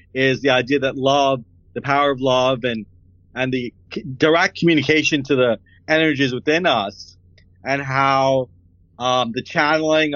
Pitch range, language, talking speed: 115-145 Hz, English, 150 wpm